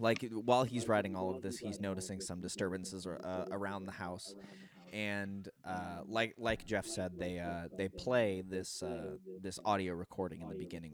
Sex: male